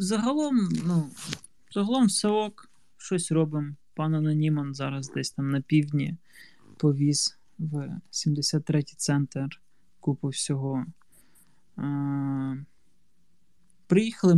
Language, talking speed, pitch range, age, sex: Ukrainian, 90 wpm, 145-170 Hz, 20-39, male